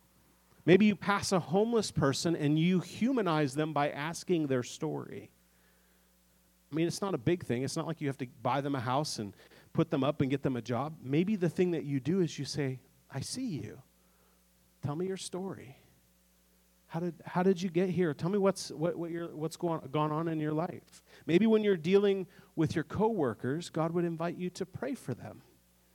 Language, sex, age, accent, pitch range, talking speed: English, male, 40-59, American, 120-170 Hz, 210 wpm